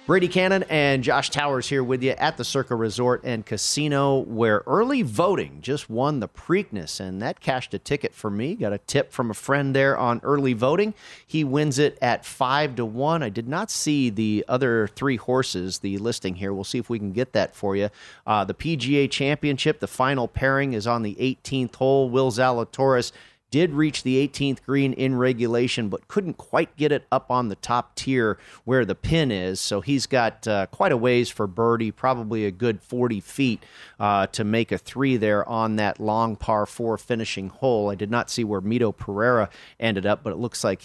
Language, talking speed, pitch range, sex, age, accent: English, 205 wpm, 110-135 Hz, male, 40-59, American